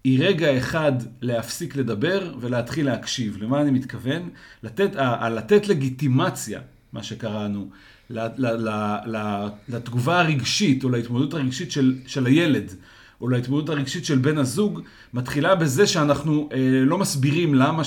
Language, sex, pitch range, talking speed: Hebrew, male, 130-160 Hz, 120 wpm